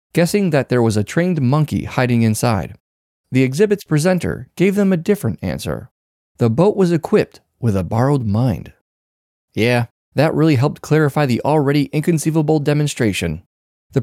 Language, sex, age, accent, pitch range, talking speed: English, male, 30-49, American, 110-160 Hz, 150 wpm